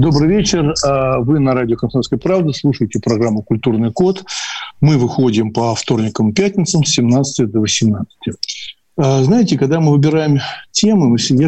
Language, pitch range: Russian, 115-150 Hz